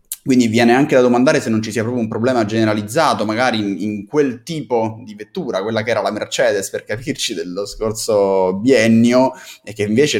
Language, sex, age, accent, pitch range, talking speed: Italian, male, 10-29, native, 105-125 Hz, 195 wpm